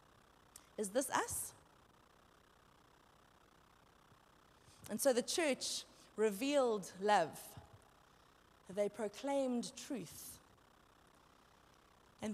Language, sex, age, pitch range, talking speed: English, female, 30-49, 225-290 Hz, 65 wpm